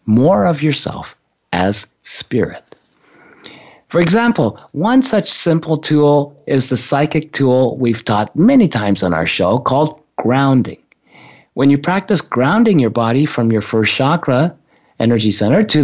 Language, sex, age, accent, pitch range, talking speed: English, male, 50-69, American, 120-165 Hz, 140 wpm